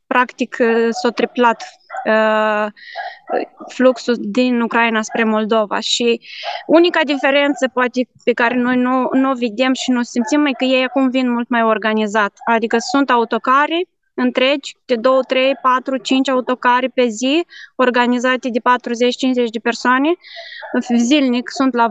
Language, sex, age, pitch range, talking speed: Romanian, female, 20-39, 230-260 Hz, 140 wpm